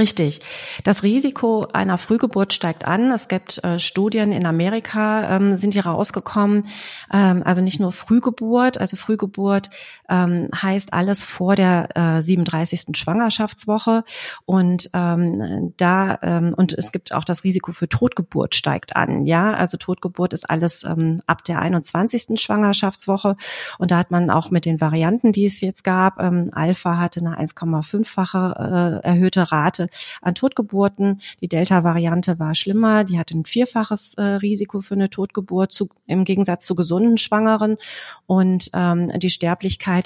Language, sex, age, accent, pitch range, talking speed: German, female, 30-49, German, 175-200 Hz, 150 wpm